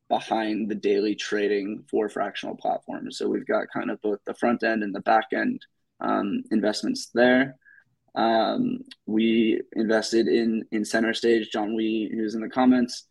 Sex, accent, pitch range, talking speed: male, American, 110-120 Hz, 150 wpm